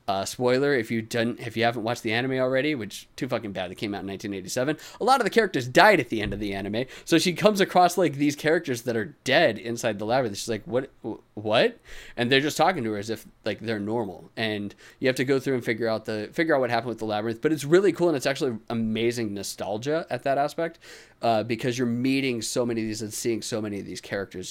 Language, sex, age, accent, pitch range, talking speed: English, male, 30-49, American, 110-135 Hz, 260 wpm